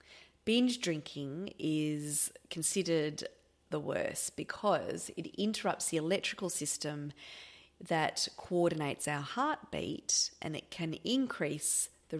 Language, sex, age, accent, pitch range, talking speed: English, female, 30-49, Australian, 155-200 Hz, 105 wpm